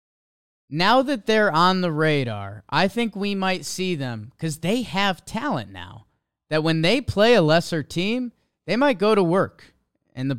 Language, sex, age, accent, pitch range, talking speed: English, male, 30-49, American, 145-205 Hz, 180 wpm